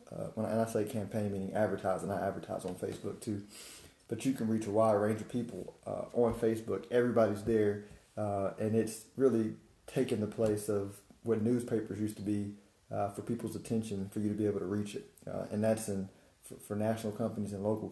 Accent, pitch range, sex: American, 100-115 Hz, male